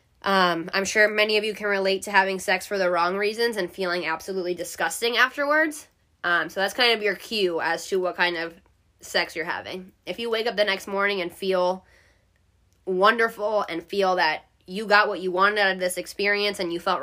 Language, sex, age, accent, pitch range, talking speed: English, female, 20-39, American, 175-210 Hz, 210 wpm